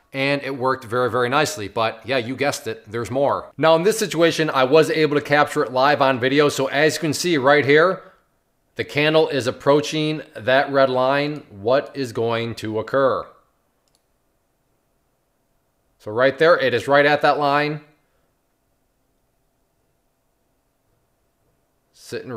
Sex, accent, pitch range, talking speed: male, American, 125-150 Hz, 150 wpm